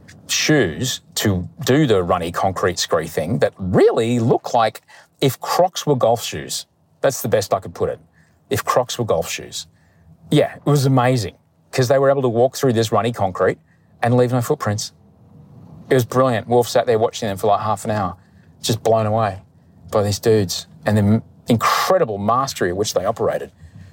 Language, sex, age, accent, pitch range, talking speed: English, male, 40-59, Australian, 90-130 Hz, 185 wpm